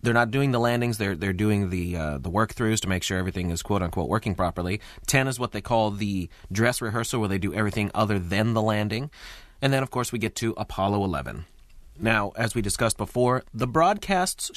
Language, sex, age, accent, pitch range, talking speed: English, male, 30-49, American, 90-115 Hz, 215 wpm